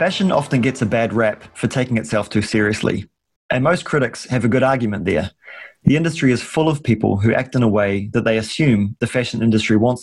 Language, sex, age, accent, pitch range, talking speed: English, male, 30-49, Australian, 110-130 Hz, 220 wpm